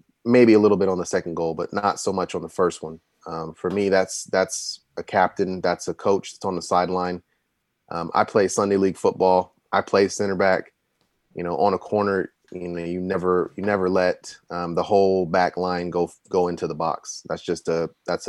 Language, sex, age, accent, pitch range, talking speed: English, male, 30-49, American, 85-95 Hz, 215 wpm